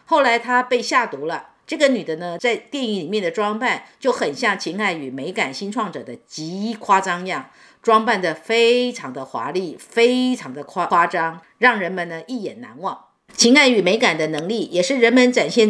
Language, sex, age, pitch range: Chinese, female, 50-69, 185-245 Hz